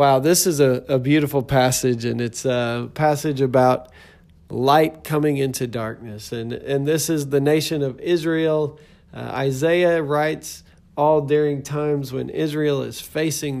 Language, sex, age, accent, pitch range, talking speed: English, male, 40-59, American, 115-150 Hz, 150 wpm